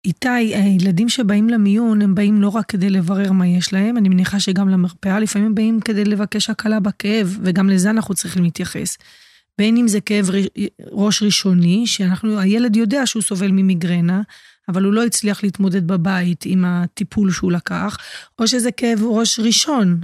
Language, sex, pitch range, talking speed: Hebrew, female, 185-215 Hz, 160 wpm